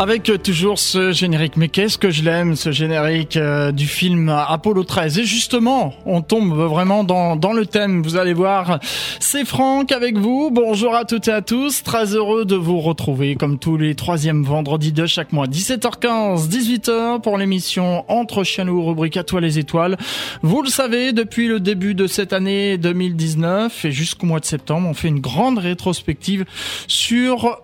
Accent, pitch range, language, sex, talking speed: French, 165-220 Hz, French, male, 180 wpm